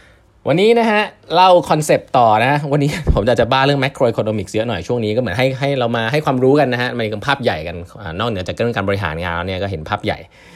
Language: Thai